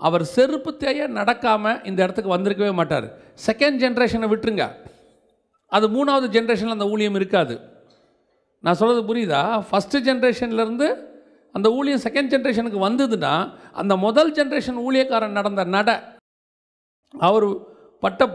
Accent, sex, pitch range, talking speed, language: native, male, 205-265 Hz, 115 wpm, Tamil